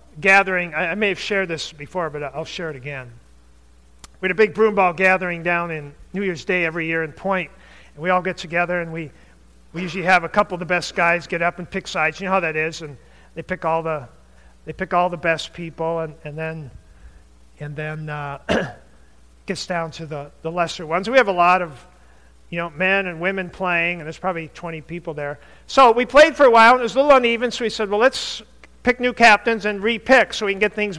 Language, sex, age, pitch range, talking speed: English, male, 50-69, 160-220 Hz, 235 wpm